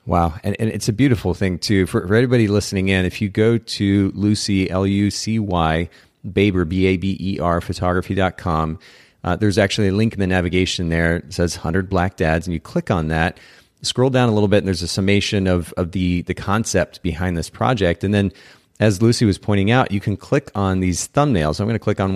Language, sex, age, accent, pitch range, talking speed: English, male, 30-49, American, 90-105 Hz, 210 wpm